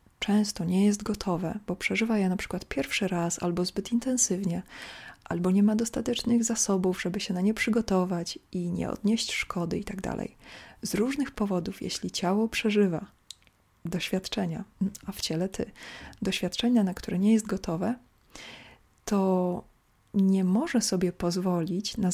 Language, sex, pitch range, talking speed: Polish, female, 180-220 Hz, 145 wpm